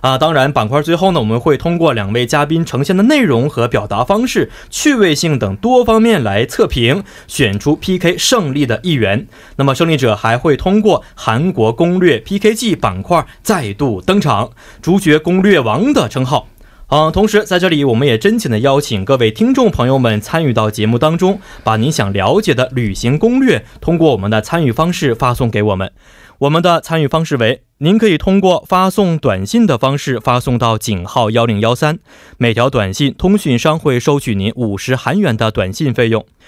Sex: male